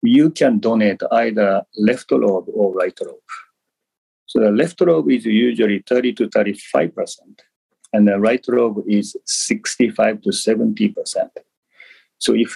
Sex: male